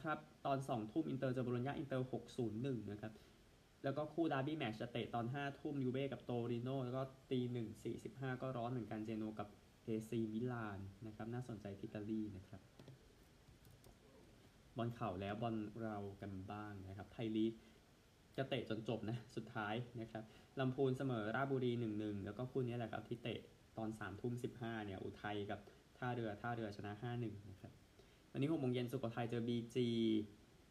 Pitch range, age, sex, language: 110-130 Hz, 20-39, male, Thai